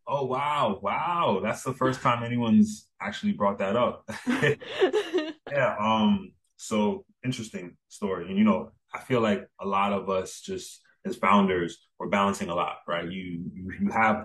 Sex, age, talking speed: male, 20-39, 165 wpm